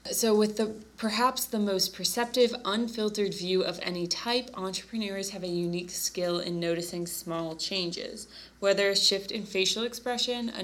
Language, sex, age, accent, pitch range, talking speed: English, female, 20-39, American, 170-190 Hz, 160 wpm